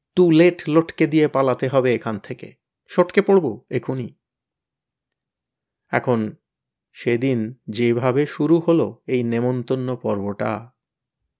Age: 30-49